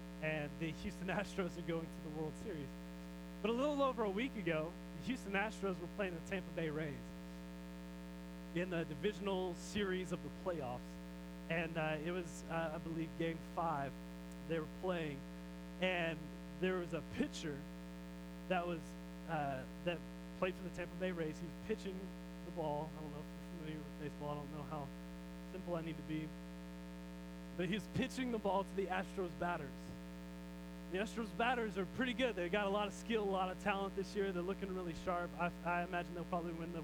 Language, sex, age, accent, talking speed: English, male, 20-39, American, 195 wpm